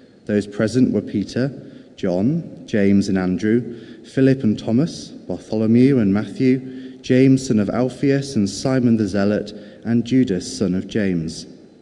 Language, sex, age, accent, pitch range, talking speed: English, male, 30-49, British, 100-125 Hz, 135 wpm